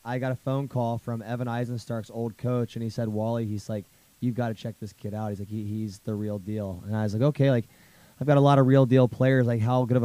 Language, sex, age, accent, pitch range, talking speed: English, male, 20-39, American, 110-120 Hz, 285 wpm